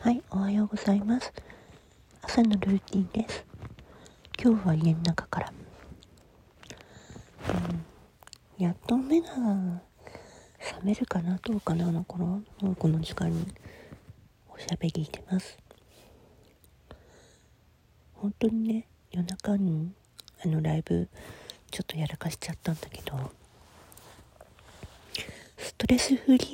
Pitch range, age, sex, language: 145-205 Hz, 40-59, female, Japanese